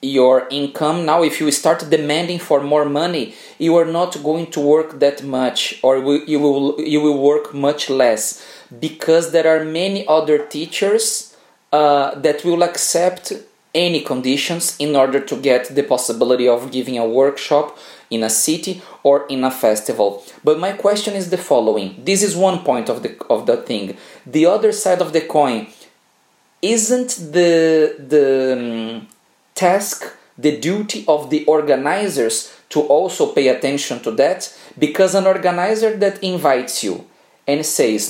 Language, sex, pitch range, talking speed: English, male, 140-180 Hz, 155 wpm